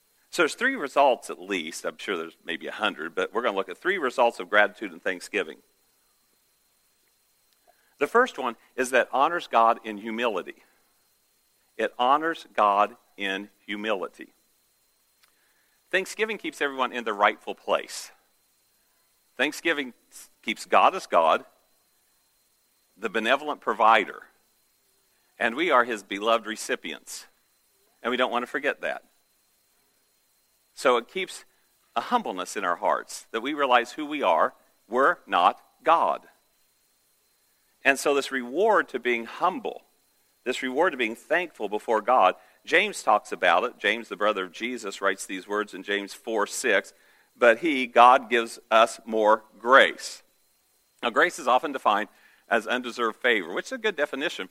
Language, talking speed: English, 145 wpm